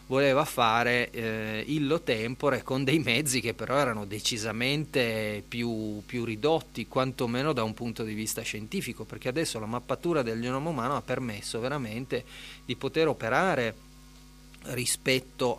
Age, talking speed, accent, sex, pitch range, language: 30-49, 140 wpm, native, male, 115-145 Hz, Italian